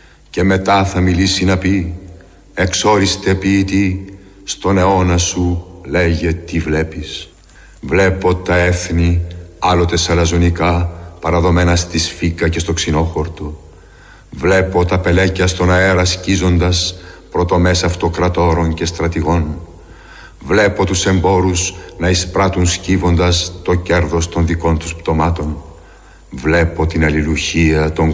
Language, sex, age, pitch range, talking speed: Greek, male, 60-79, 85-95 Hz, 110 wpm